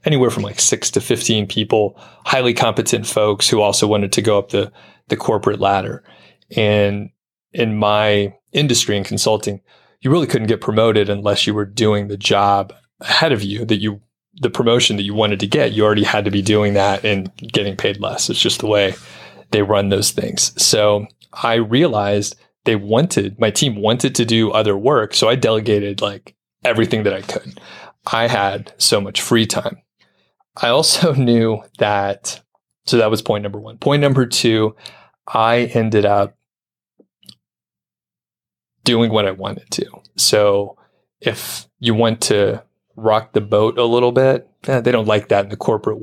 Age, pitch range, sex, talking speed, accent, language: 30-49, 100-115 Hz, male, 175 wpm, American, English